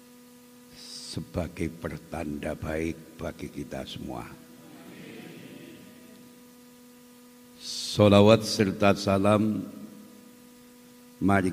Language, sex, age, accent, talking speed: Indonesian, male, 60-79, native, 50 wpm